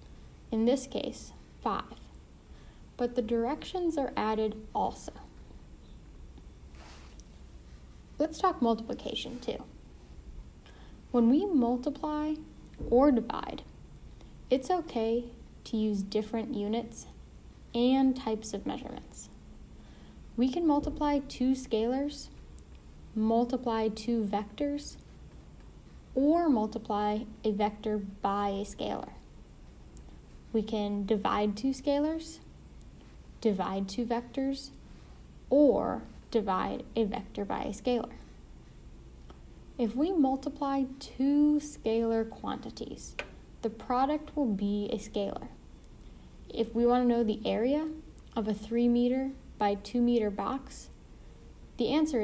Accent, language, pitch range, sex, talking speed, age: American, English, 205-270 Hz, female, 100 wpm, 10-29